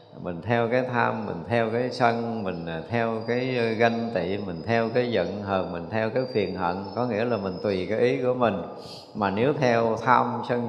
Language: Vietnamese